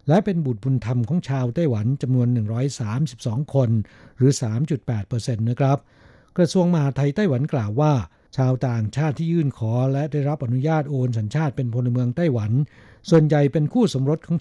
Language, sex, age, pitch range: Thai, male, 60-79, 120-155 Hz